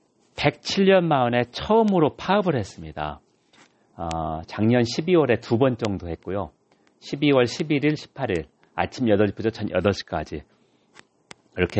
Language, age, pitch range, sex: Korean, 40-59, 105-150 Hz, male